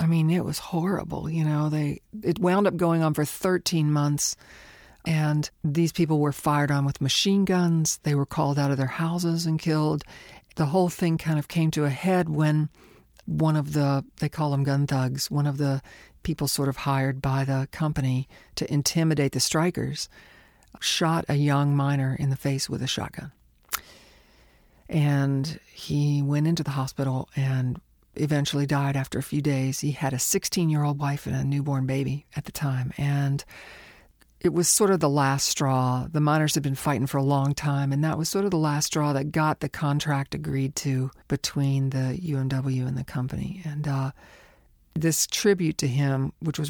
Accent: American